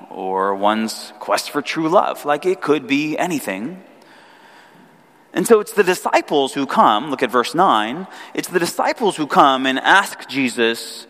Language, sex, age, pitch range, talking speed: English, male, 30-49, 130-210 Hz, 160 wpm